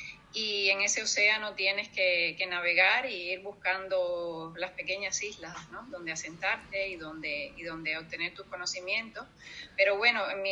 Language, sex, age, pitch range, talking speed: Spanish, female, 30-49, 180-215 Hz, 155 wpm